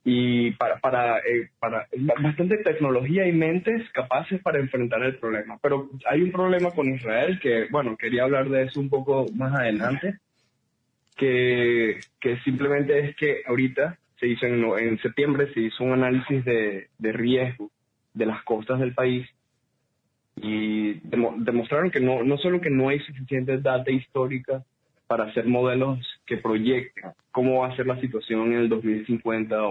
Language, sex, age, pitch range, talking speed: Spanish, male, 20-39, 115-140 Hz, 160 wpm